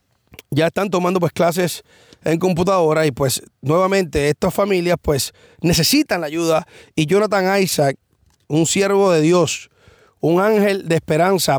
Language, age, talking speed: English, 30-49, 140 wpm